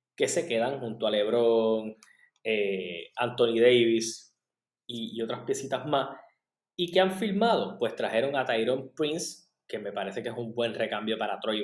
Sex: male